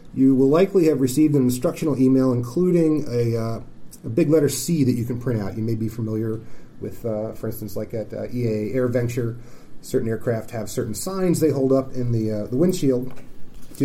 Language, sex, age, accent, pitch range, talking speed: English, male, 30-49, American, 115-150 Hz, 210 wpm